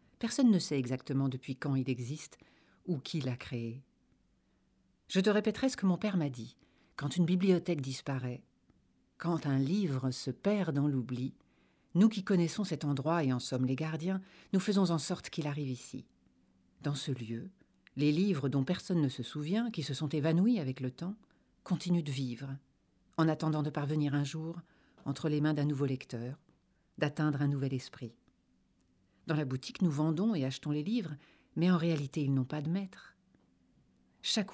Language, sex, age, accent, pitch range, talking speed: French, female, 50-69, French, 130-180 Hz, 180 wpm